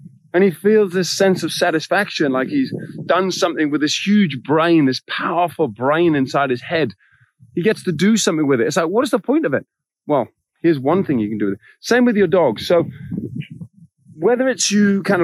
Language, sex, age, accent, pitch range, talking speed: English, male, 30-49, British, 140-180 Hz, 215 wpm